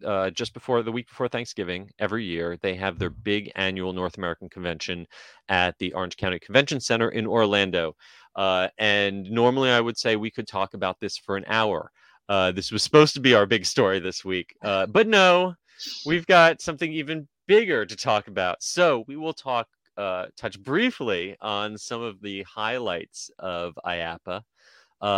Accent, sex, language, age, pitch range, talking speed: American, male, English, 30-49, 90-120 Hz, 180 wpm